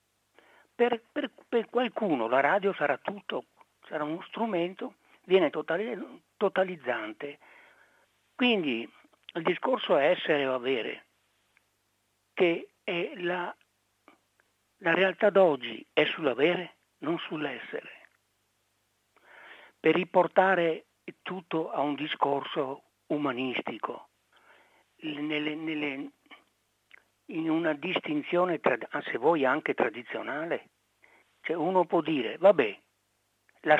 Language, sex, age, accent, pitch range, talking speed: Italian, male, 60-79, native, 150-200 Hz, 95 wpm